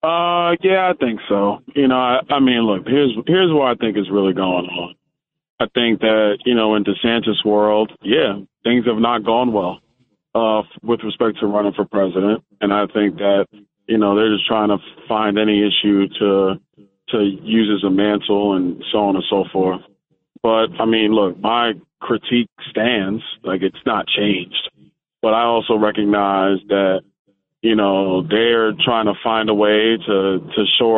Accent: American